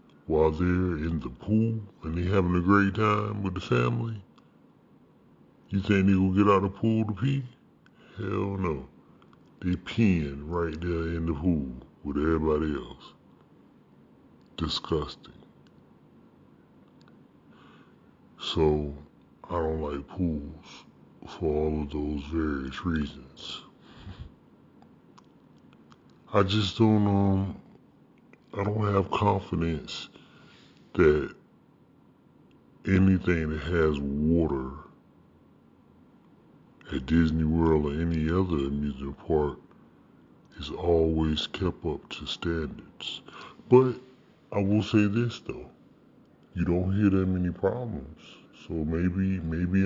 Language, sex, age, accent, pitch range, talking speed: English, female, 60-79, American, 80-95 Hz, 110 wpm